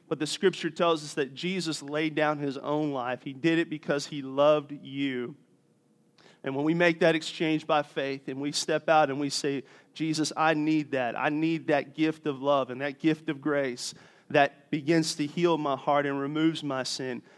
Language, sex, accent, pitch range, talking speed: English, male, American, 145-175 Hz, 205 wpm